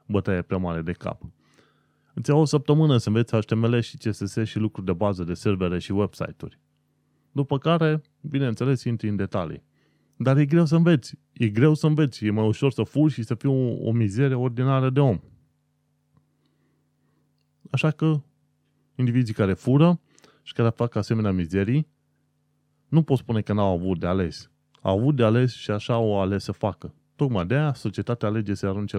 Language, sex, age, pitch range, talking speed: Romanian, male, 30-49, 95-135 Hz, 175 wpm